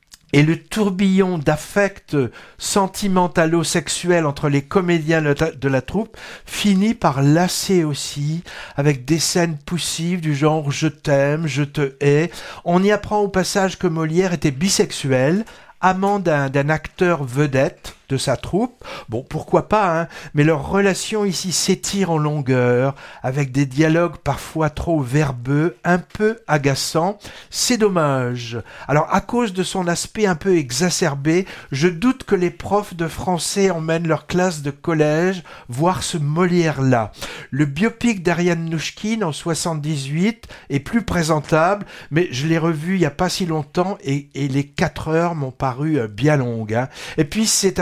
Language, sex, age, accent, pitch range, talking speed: French, male, 60-79, French, 145-190 Hz, 155 wpm